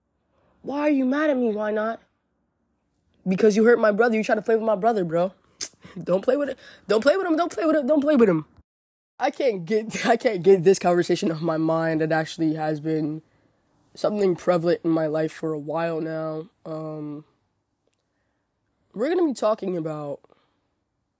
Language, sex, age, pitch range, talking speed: English, female, 20-39, 155-215 Hz, 190 wpm